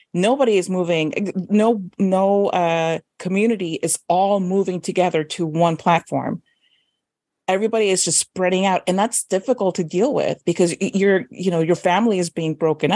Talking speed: 155 wpm